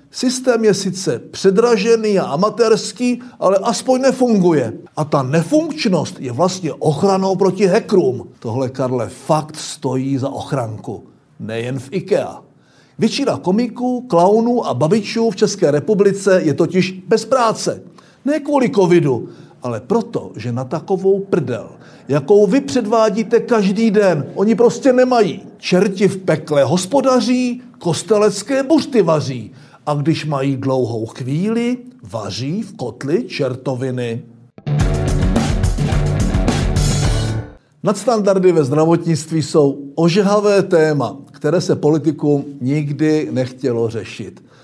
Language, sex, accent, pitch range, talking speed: Czech, male, native, 140-215 Hz, 110 wpm